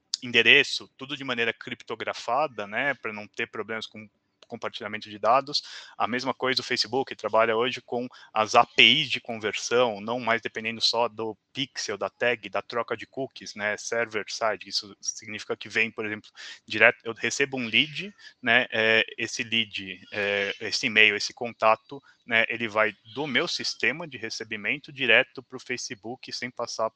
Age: 20-39